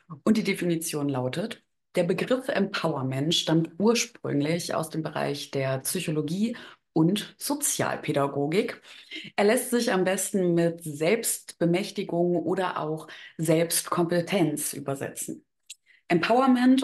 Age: 30-49